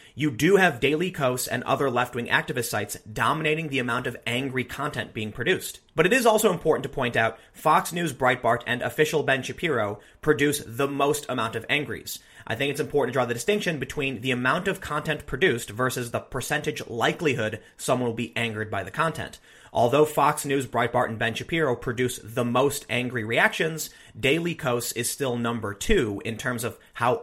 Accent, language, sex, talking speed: American, English, male, 190 wpm